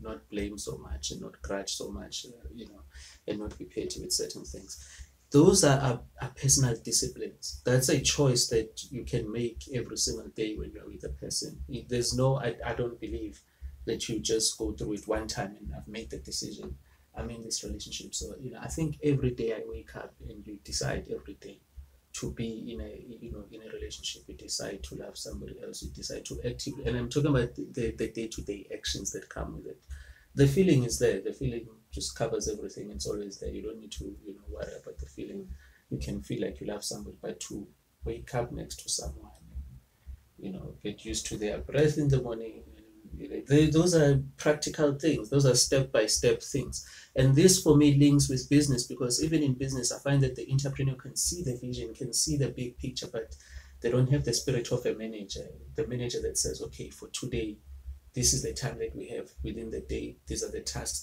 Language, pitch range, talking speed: English, 95-140 Hz, 215 wpm